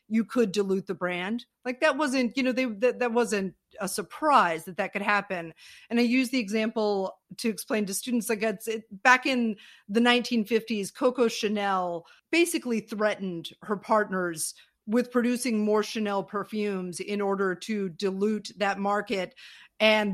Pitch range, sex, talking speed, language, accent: 195-235 Hz, female, 160 wpm, English, American